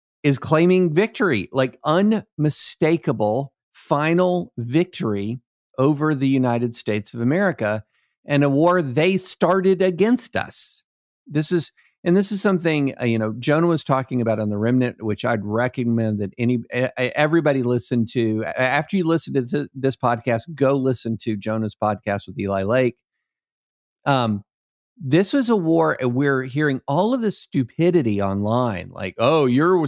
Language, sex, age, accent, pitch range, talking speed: English, male, 50-69, American, 115-155 Hz, 145 wpm